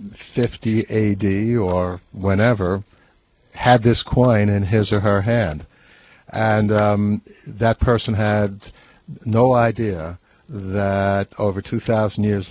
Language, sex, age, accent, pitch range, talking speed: English, male, 60-79, American, 100-120 Hz, 110 wpm